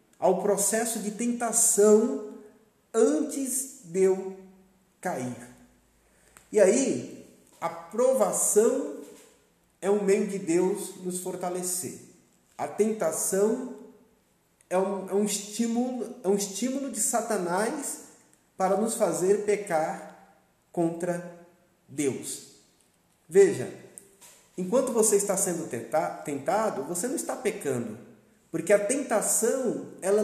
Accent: Brazilian